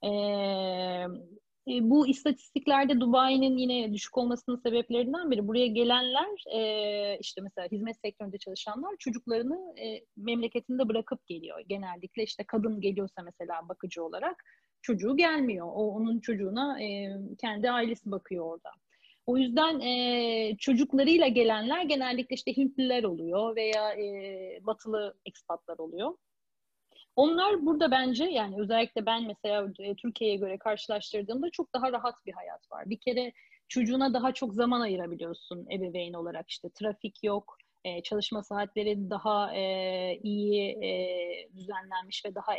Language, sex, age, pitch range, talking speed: Turkish, female, 30-49, 200-255 Hz, 125 wpm